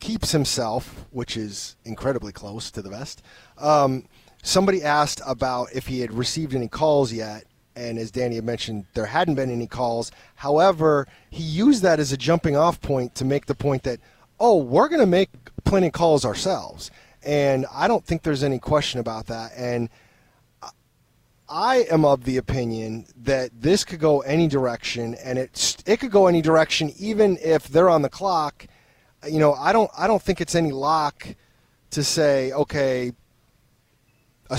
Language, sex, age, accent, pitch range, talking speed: English, male, 30-49, American, 125-155 Hz, 170 wpm